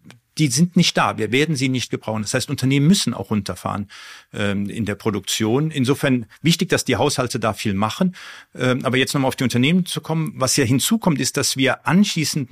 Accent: German